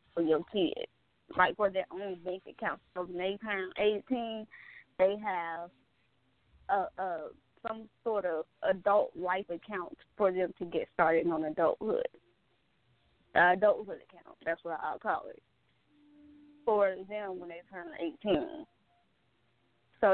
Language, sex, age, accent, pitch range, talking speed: English, female, 20-39, American, 170-230 Hz, 140 wpm